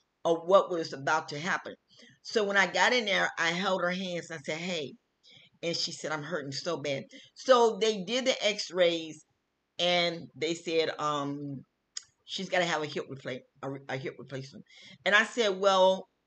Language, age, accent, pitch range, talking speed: English, 40-59, American, 145-190 Hz, 190 wpm